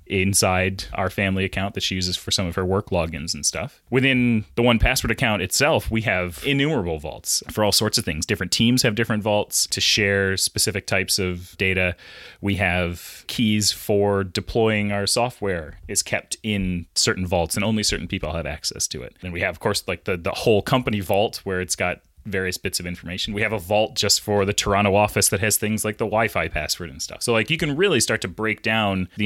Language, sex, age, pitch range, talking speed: English, male, 30-49, 90-105 Hz, 220 wpm